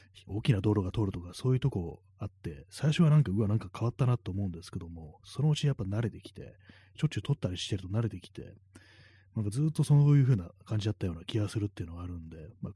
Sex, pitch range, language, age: male, 95-115 Hz, Japanese, 30-49